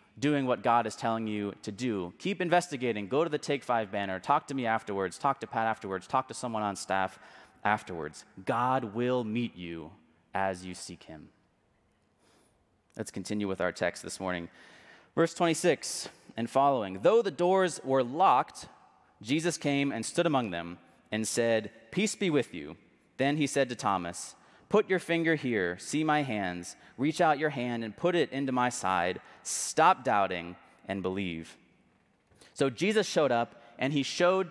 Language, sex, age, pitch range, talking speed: English, male, 30-49, 105-150 Hz, 170 wpm